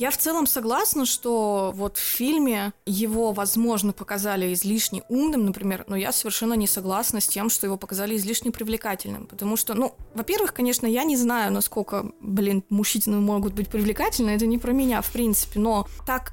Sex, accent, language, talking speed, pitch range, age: female, native, Russian, 175 wpm, 200-235 Hz, 20-39